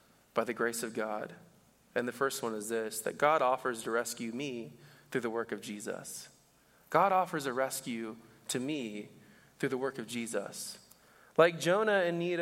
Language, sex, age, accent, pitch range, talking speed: English, male, 20-39, American, 120-165 Hz, 180 wpm